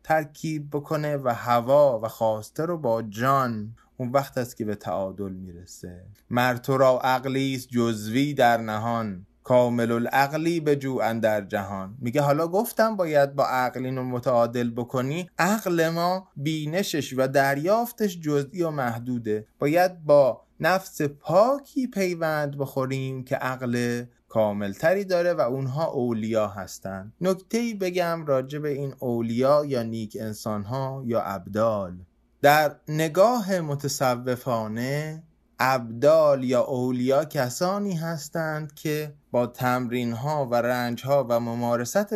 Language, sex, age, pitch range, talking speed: English, male, 20-39, 115-160 Hz, 125 wpm